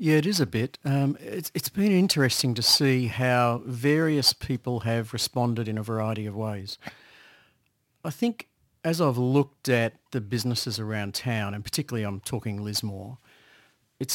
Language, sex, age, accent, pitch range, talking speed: English, male, 50-69, Australian, 110-140 Hz, 160 wpm